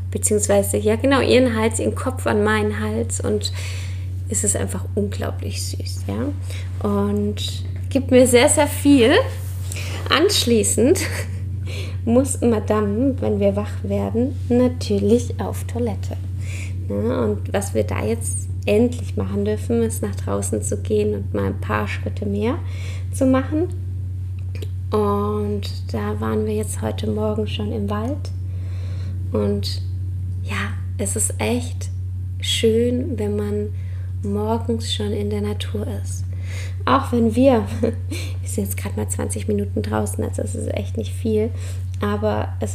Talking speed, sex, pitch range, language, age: 135 wpm, female, 95-105 Hz, German, 20-39